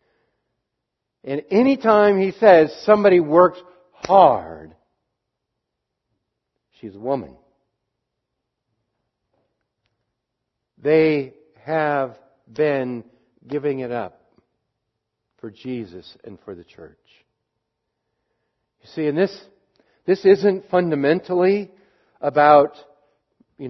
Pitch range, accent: 115-175 Hz, American